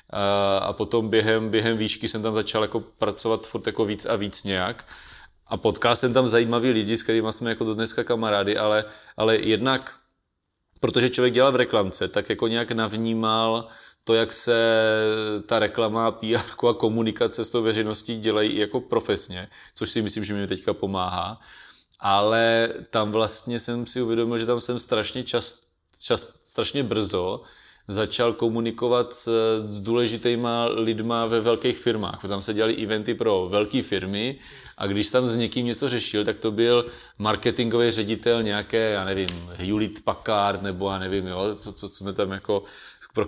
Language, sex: Czech, male